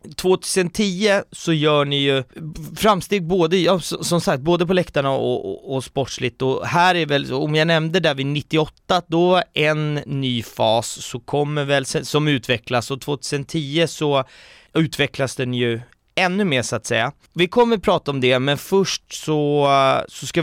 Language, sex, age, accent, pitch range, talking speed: Swedish, male, 30-49, native, 130-170 Hz, 165 wpm